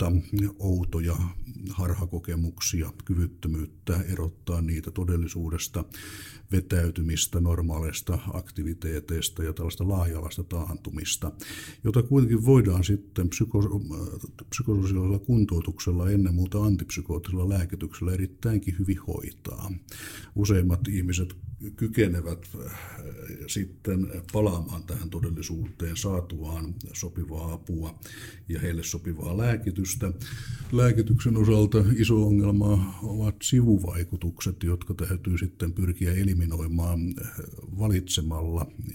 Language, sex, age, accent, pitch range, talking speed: Finnish, male, 60-79, native, 85-100 Hz, 80 wpm